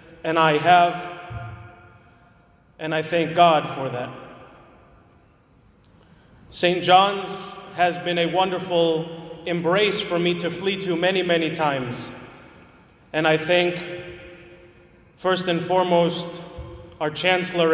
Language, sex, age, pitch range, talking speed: English, male, 30-49, 160-180 Hz, 110 wpm